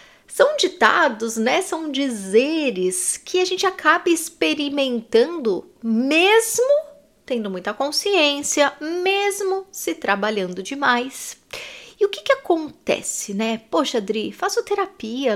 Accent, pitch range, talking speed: Brazilian, 220-330 Hz, 110 wpm